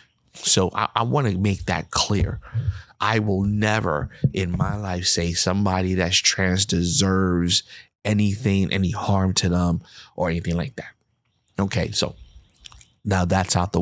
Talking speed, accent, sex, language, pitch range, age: 145 wpm, American, male, English, 90-105 Hz, 30-49